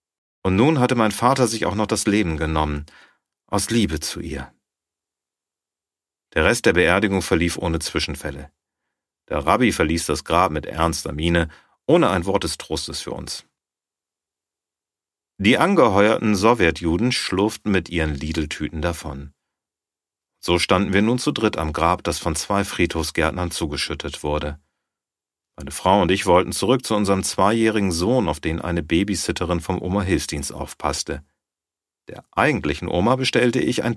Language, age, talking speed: German, 40-59, 145 wpm